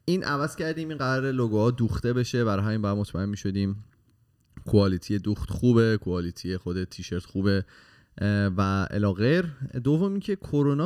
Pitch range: 95-125 Hz